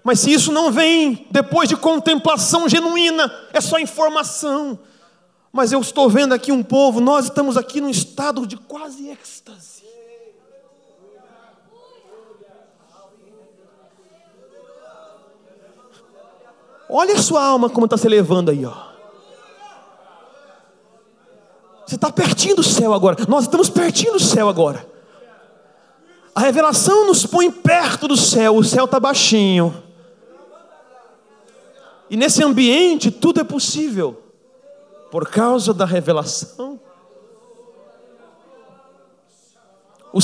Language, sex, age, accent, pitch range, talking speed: Portuguese, male, 30-49, Brazilian, 240-335 Hz, 105 wpm